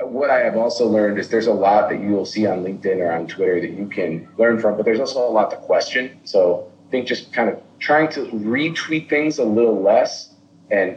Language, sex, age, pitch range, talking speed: English, male, 30-49, 100-150 Hz, 240 wpm